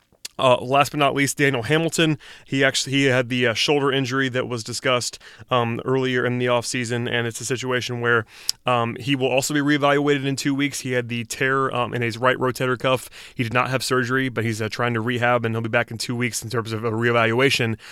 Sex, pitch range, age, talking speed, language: male, 115-130 Hz, 30-49, 235 wpm, English